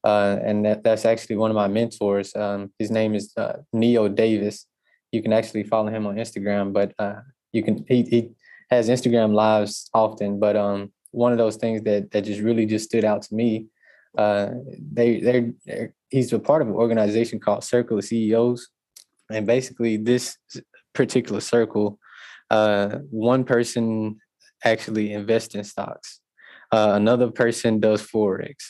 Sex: male